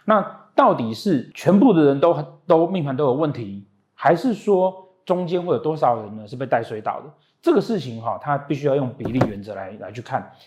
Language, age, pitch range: Chinese, 30-49, 120-170 Hz